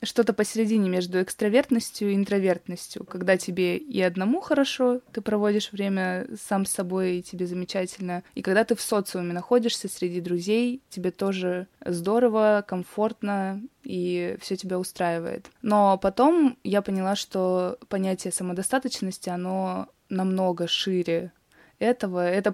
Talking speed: 130 wpm